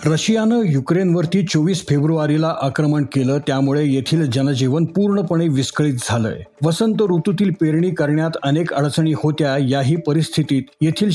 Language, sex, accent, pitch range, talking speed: Marathi, male, native, 145-175 Hz, 65 wpm